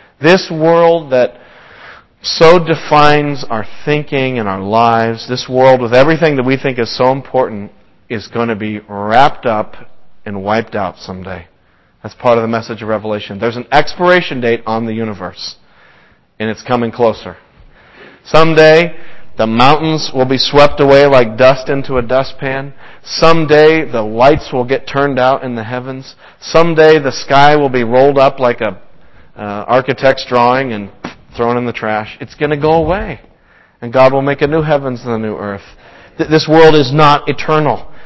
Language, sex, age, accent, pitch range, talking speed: English, male, 40-59, American, 115-155 Hz, 170 wpm